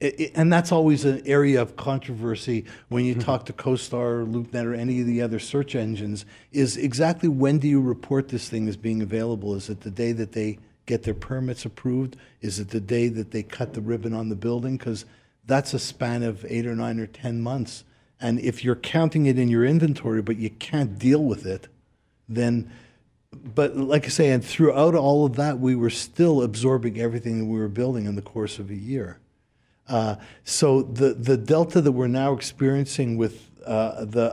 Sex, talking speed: male, 205 wpm